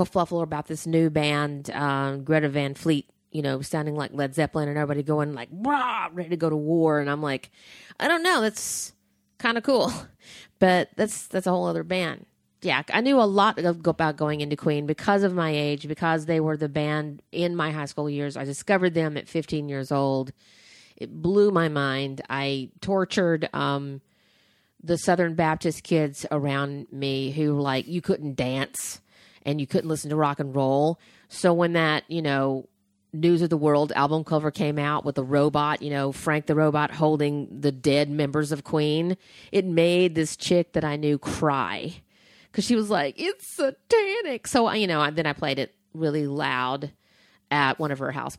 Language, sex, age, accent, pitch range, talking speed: English, female, 30-49, American, 145-180 Hz, 190 wpm